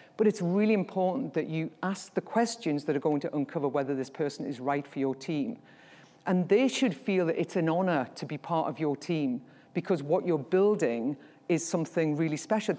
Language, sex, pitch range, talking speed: English, female, 160-205 Hz, 205 wpm